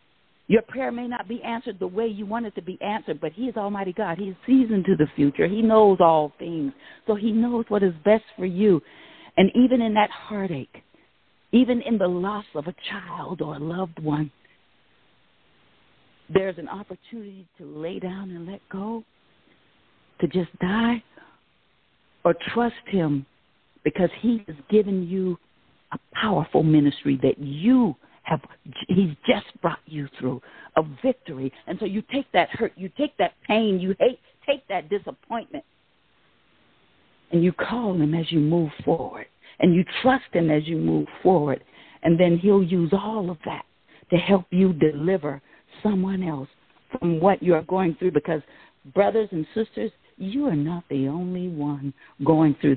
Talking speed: 165 wpm